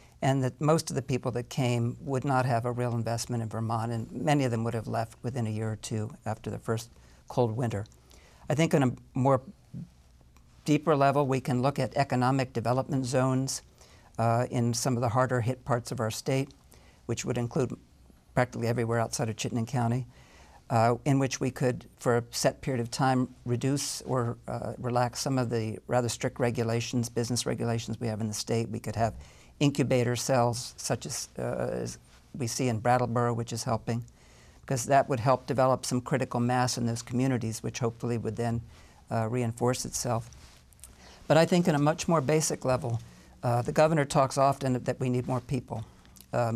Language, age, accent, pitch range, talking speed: English, 50-69, American, 115-130 Hz, 190 wpm